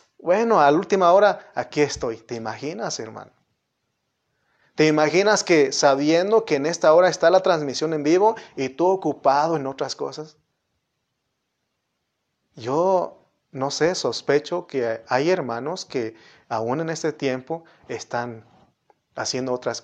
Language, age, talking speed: Spanish, 30-49, 135 wpm